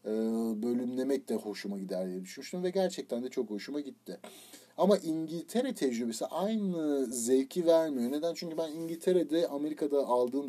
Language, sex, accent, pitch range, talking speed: Turkish, male, native, 120-165 Hz, 135 wpm